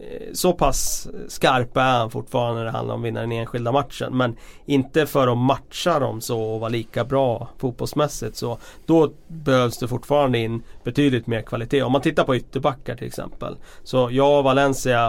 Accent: native